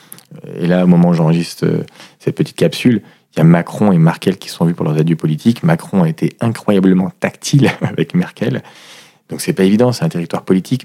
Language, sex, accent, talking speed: French, male, French, 210 wpm